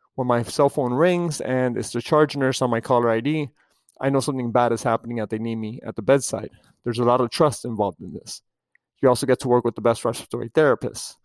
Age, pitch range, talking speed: 30-49, 120-145 Hz, 240 wpm